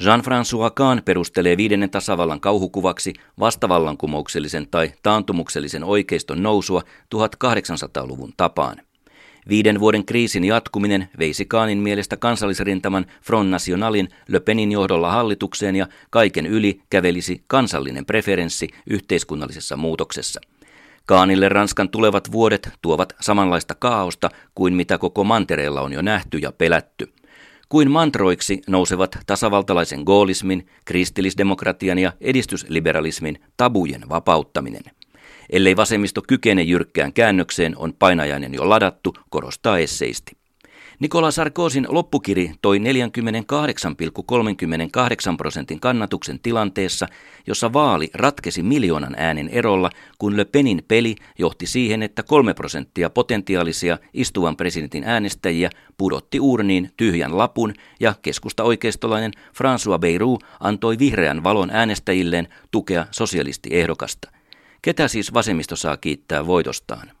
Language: Finnish